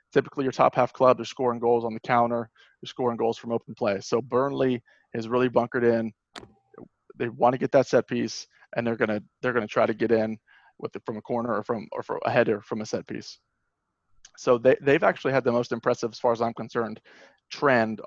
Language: English